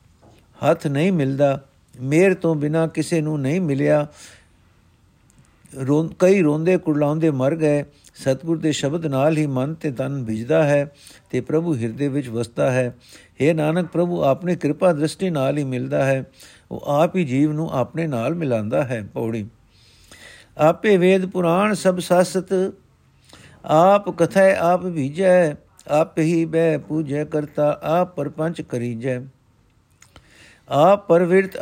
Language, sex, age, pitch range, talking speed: Punjabi, male, 60-79, 140-175 Hz, 135 wpm